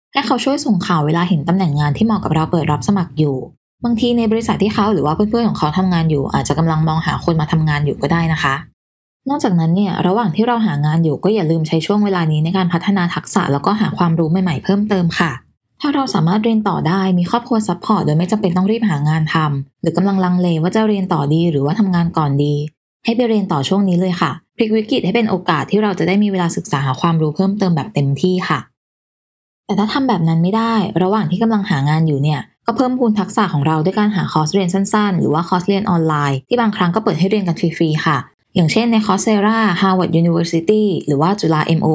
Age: 20-39